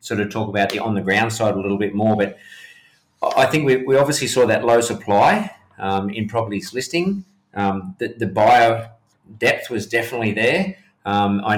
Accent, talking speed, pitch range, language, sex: Australian, 190 wpm, 110-130 Hz, English, male